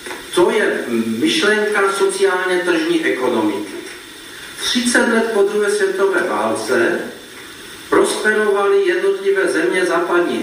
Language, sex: Slovak, male